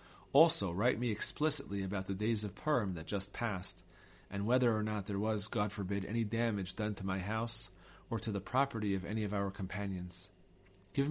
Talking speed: 195 wpm